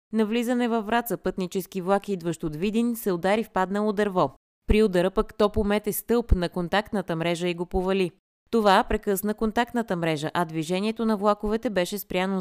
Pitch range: 175-215 Hz